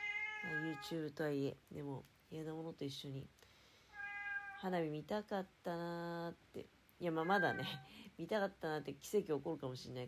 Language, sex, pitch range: Japanese, female, 135-195 Hz